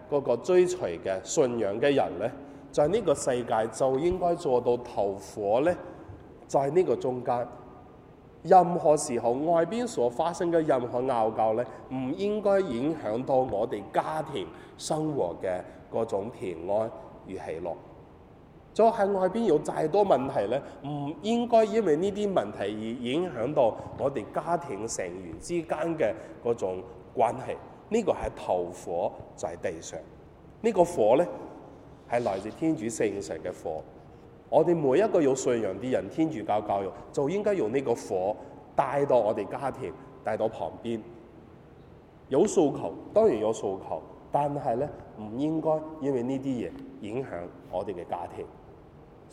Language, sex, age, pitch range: Chinese, male, 20-39, 120-170 Hz